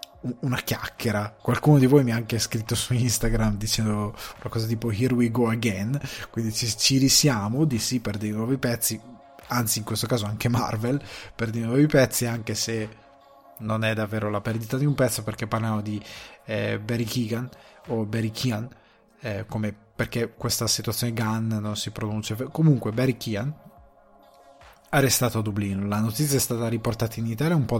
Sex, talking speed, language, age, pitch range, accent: male, 180 wpm, Italian, 20-39, 110-125 Hz, native